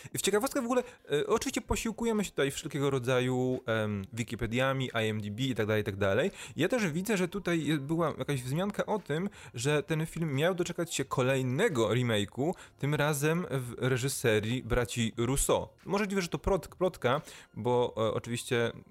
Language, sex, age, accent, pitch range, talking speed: Polish, male, 20-39, native, 110-160 Hz, 165 wpm